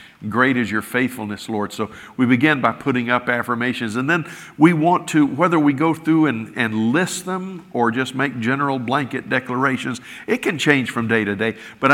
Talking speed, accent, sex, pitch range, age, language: 195 wpm, American, male, 120-145 Hz, 50-69, English